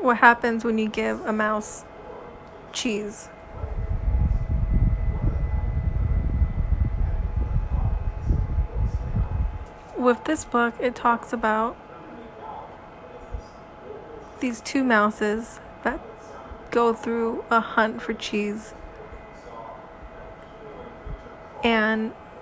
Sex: female